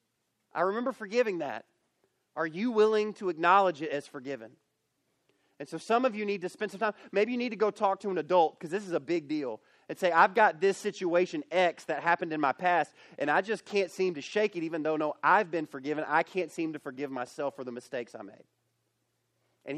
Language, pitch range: English, 140-180 Hz